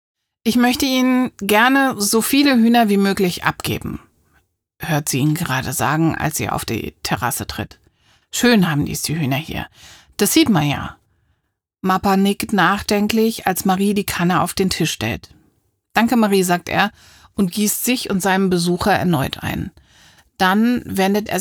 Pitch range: 160-210 Hz